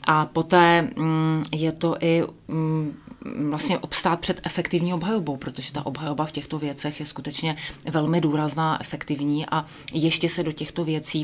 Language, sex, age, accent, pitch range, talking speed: Czech, female, 30-49, native, 150-160 Hz, 145 wpm